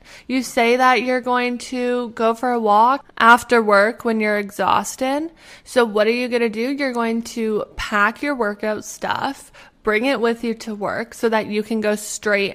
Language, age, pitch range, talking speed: English, 20-39, 205-240 Hz, 195 wpm